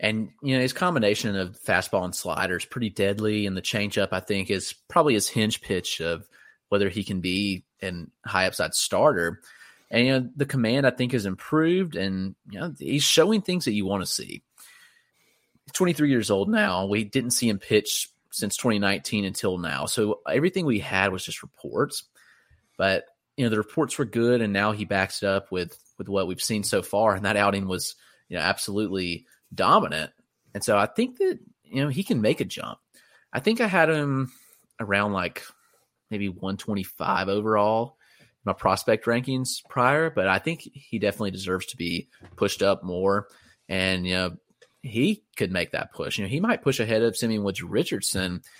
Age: 30-49